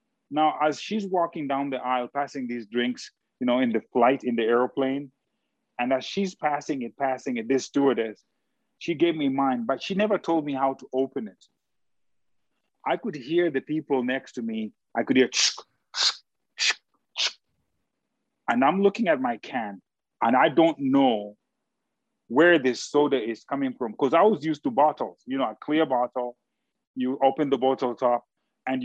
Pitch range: 135-205 Hz